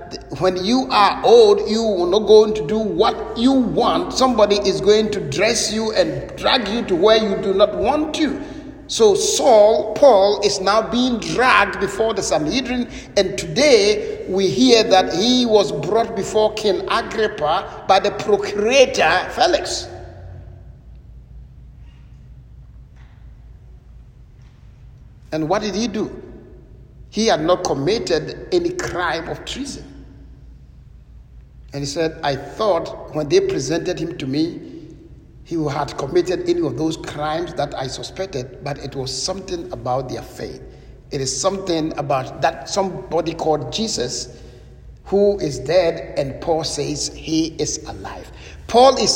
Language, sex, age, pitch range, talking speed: English, male, 60-79, 155-245 Hz, 140 wpm